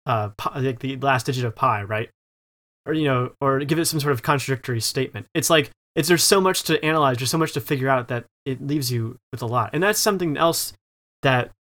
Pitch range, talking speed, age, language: 120-155 Hz, 230 wpm, 20-39, English